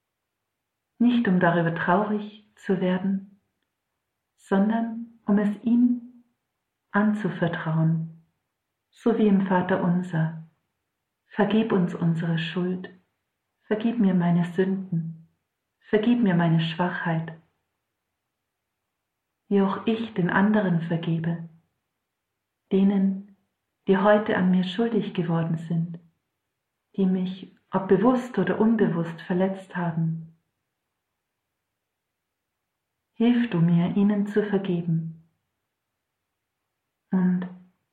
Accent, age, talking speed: German, 50-69, 90 wpm